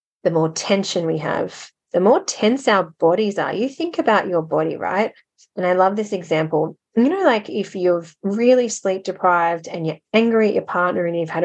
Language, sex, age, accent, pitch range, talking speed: English, female, 30-49, Australian, 170-205 Hz, 205 wpm